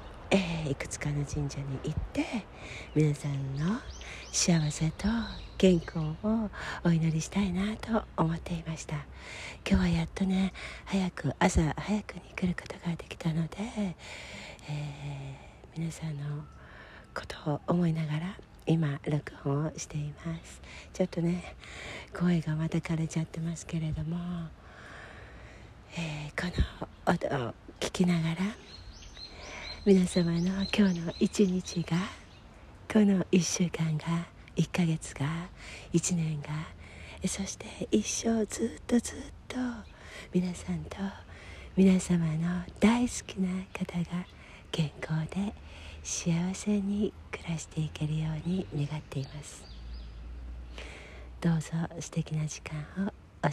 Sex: female